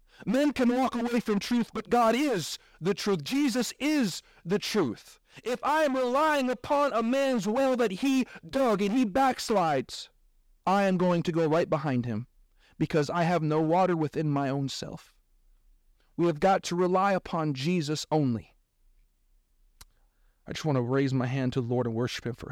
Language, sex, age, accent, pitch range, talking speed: English, male, 40-59, American, 130-175 Hz, 180 wpm